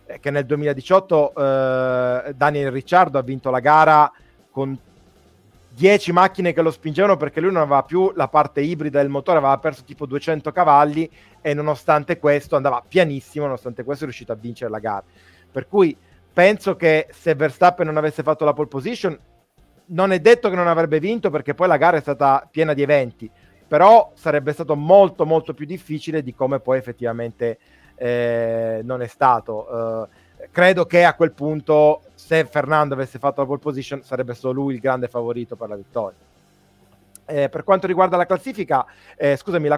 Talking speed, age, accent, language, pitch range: 180 wpm, 30-49, native, Italian, 130-160 Hz